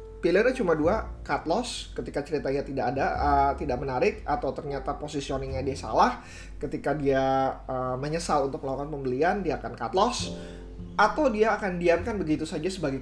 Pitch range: 130-170 Hz